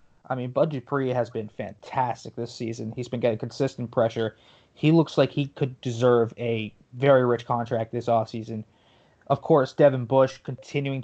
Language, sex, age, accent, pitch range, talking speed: English, male, 20-39, American, 115-130 Hz, 170 wpm